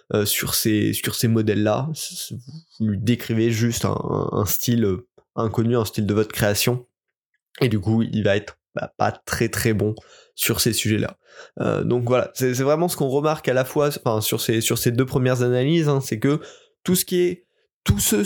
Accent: French